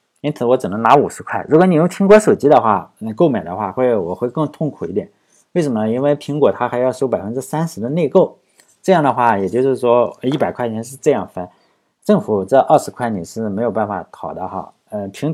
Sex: male